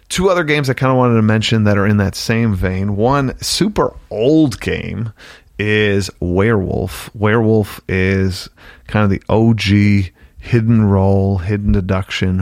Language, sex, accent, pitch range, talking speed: English, male, American, 95-115 Hz, 150 wpm